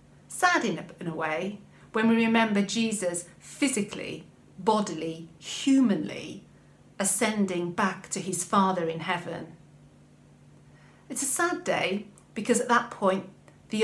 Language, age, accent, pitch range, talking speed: English, 40-59, British, 175-225 Hz, 120 wpm